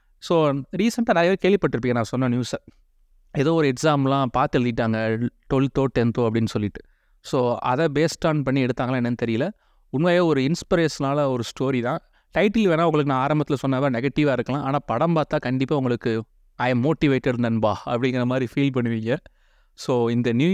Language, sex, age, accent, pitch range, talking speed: Tamil, male, 30-49, native, 120-150 Hz, 155 wpm